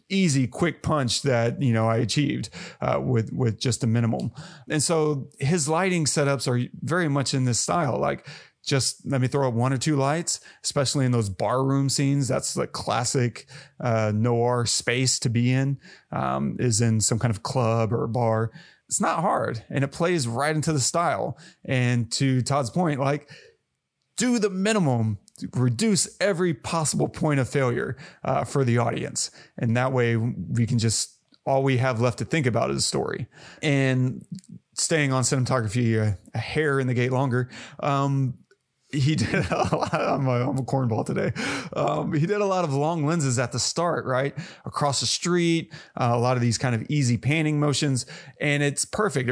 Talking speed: 180 wpm